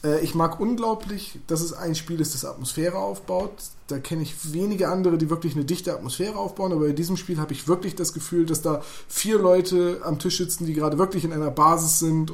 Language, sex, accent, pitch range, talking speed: German, male, German, 150-175 Hz, 220 wpm